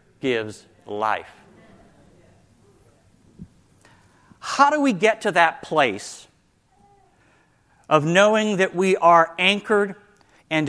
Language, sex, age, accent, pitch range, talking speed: English, male, 50-69, American, 130-200 Hz, 90 wpm